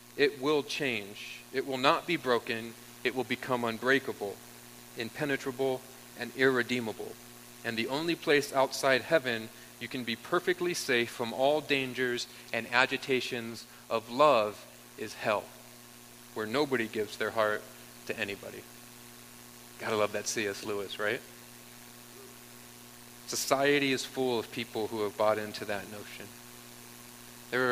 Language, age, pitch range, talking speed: English, 40-59, 100-125 Hz, 130 wpm